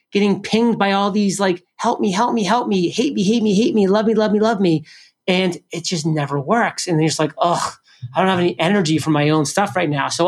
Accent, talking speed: American, 270 wpm